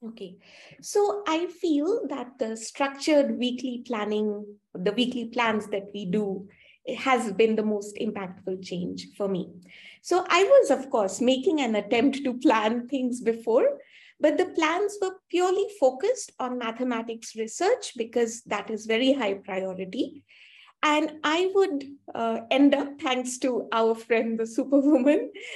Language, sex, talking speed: English, female, 145 wpm